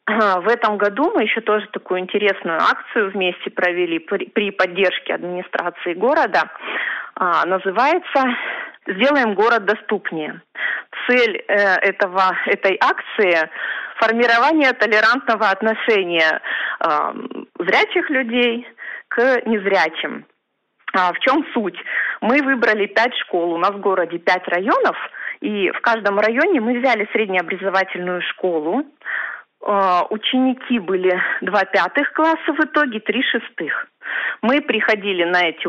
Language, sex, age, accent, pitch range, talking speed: Russian, female, 30-49, native, 185-240 Hz, 105 wpm